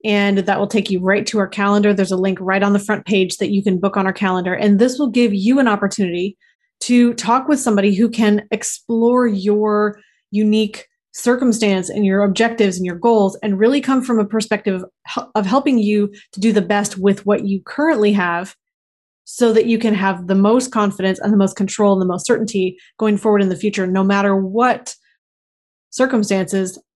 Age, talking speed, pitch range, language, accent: 20-39, 200 wpm, 200-235 Hz, English, American